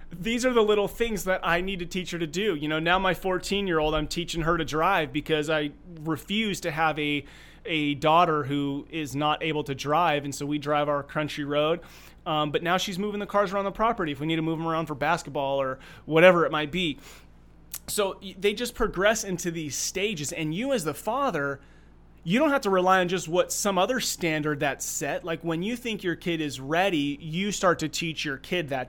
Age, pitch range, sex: 30-49, 150-180 Hz, male